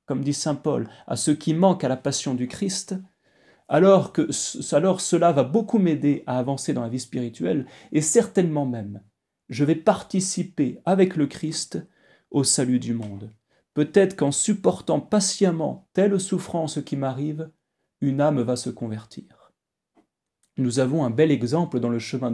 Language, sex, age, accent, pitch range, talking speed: French, male, 30-49, French, 125-175 Hz, 160 wpm